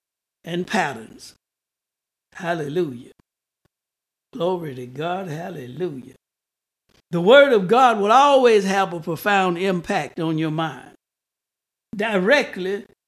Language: English